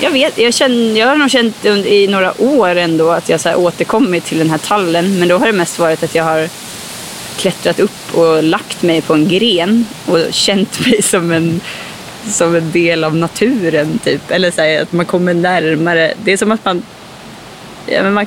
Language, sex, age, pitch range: Swedish, female, 20-39, 160-200 Hz